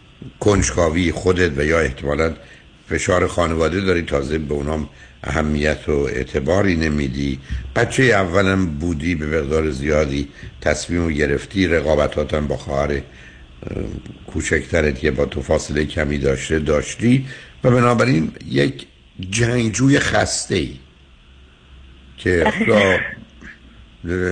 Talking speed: 100 wpm